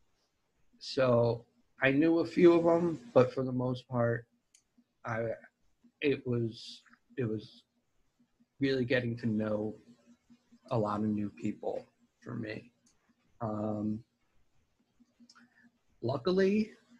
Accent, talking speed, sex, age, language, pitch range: American, 105 wpm, male, 50-69, English, 110-130 Hz